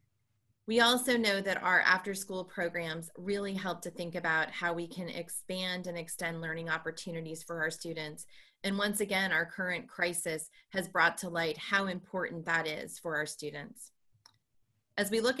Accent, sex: American, female